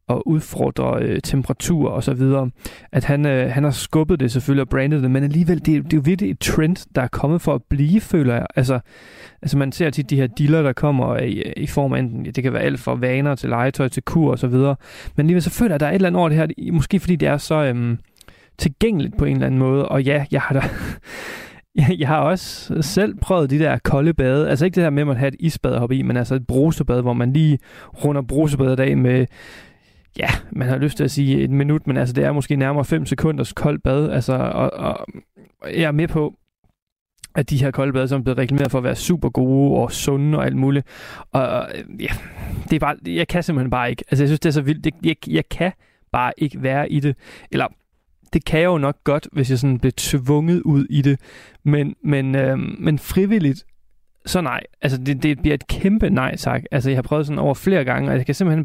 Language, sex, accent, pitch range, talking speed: Danish, male, native, 130-155 Hz, 245 wpm